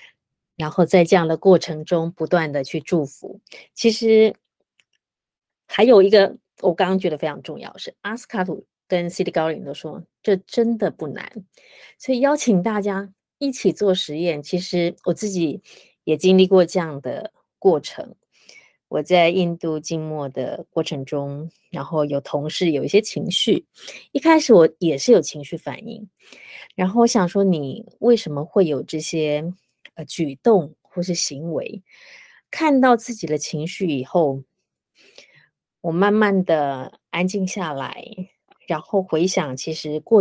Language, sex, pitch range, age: Chinese, female, 155-205 Hz, 30-49